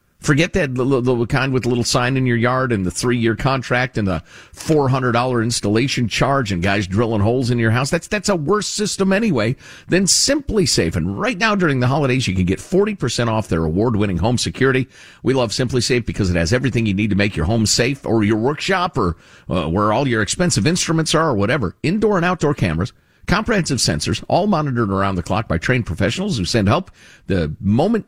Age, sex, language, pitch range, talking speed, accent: 50-69, male, English, 100-145 Hz, 215 wpm, American